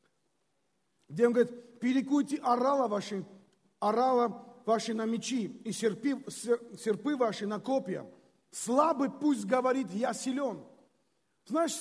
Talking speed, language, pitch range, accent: 105 wpm, Russian, 215-295 Hz, native